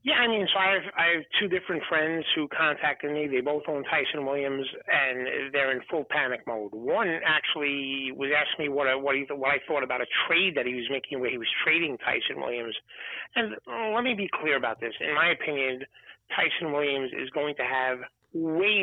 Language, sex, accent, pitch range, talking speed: English, male, American, 140-205 Hz, 200 wpm